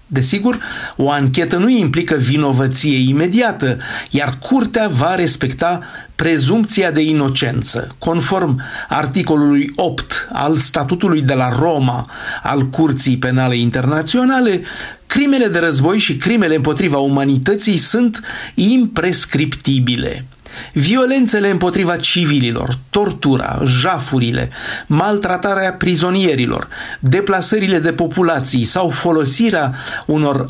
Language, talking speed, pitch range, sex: Romanian, 95 wpm, 135-185 Hz, male